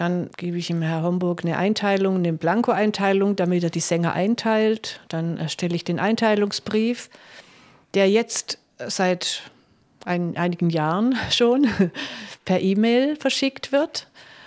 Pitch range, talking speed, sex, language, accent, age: 175-215 Hz, 130 wpm, female, German, German, 50-69